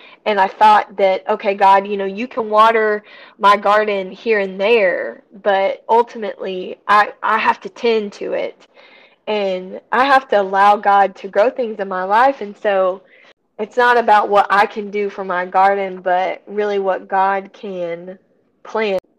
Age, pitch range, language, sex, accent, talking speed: 20-39, 195-235 Hz, English, female, American, 170 wpm